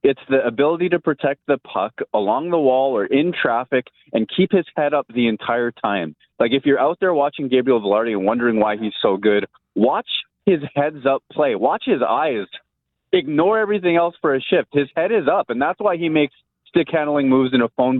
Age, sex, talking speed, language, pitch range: 20-39, male, 215 wpm, English, 115-150 Hz